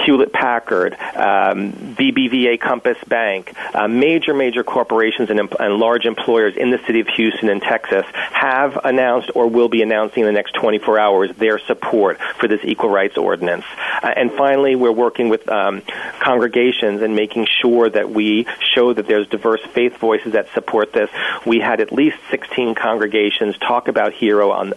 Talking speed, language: 165 wpm, English